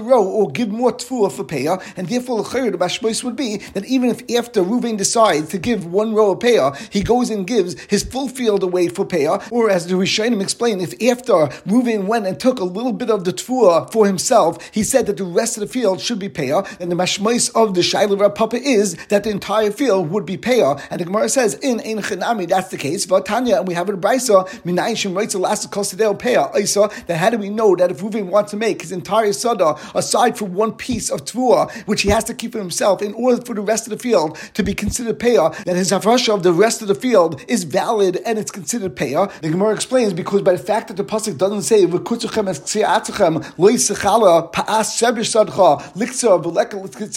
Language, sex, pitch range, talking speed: English, male, 190-225 Hz, 215 wpm